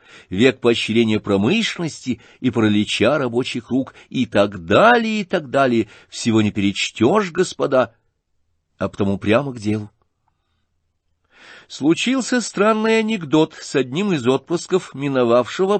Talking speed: 115 wpm